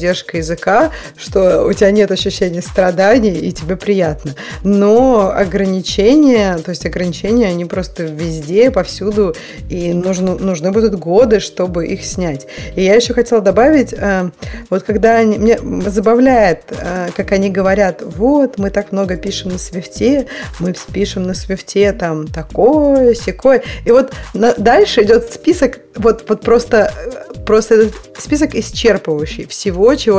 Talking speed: 135 wpm